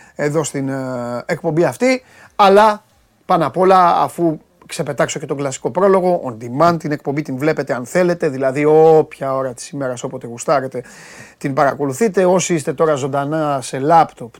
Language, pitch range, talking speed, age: Greek, 135-170 Hz, 155 wpm, 30-49